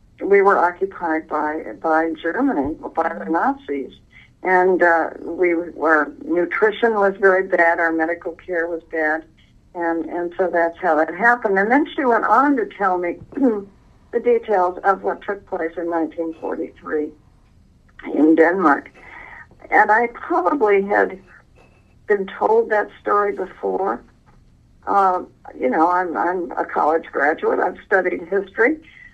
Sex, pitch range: female, 170-235 Hz